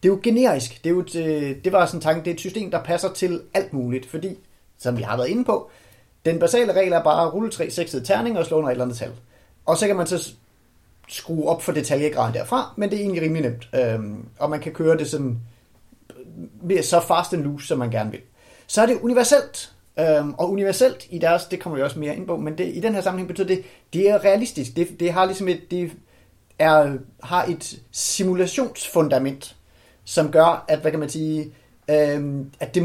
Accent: native